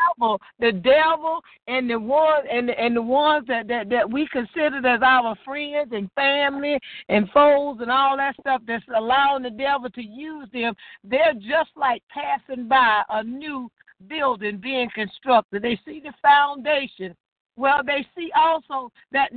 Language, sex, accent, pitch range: English, female, American, 245-305 Hz